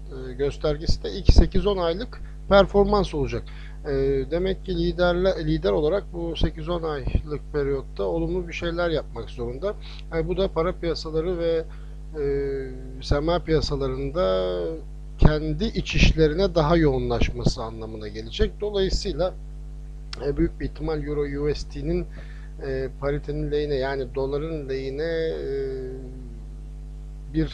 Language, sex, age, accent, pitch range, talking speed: Turkish, male, 60-79, native, 135-165 Hz, 100 wpm